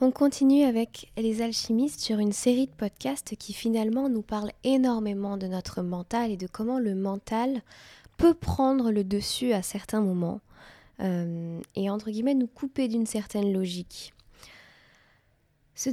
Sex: female